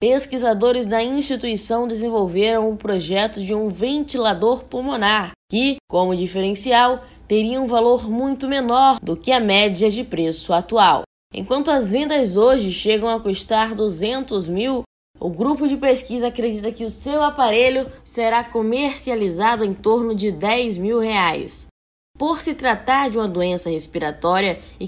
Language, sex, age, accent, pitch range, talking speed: Portuguese, female, 10-29, Brazilian, 195-250 Hz, 145 wpm